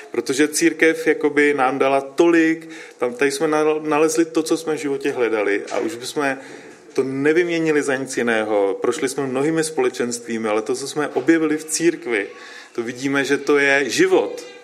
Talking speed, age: 160 wpm, 30-49